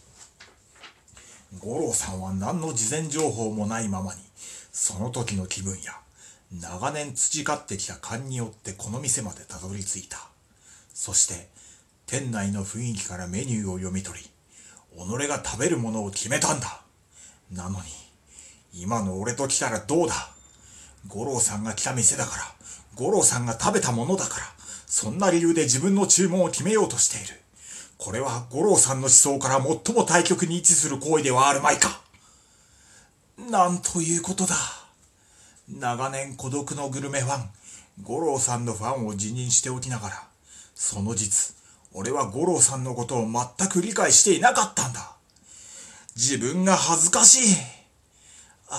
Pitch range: 95-140 Hz